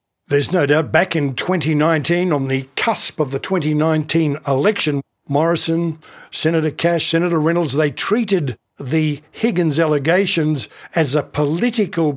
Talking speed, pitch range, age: 130 wpm, 150-185 Hz, 60-79